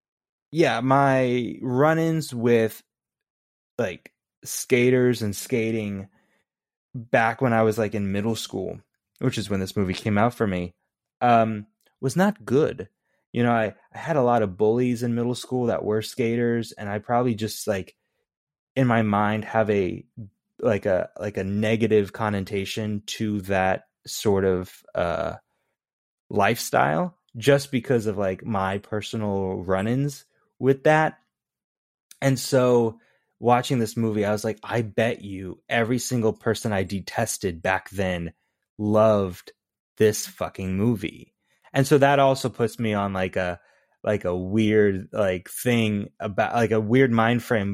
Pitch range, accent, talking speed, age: 100-120 Hz, American, 150 wpm, 20-39